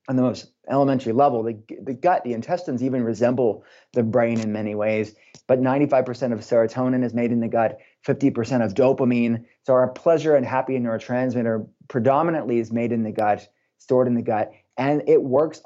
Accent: American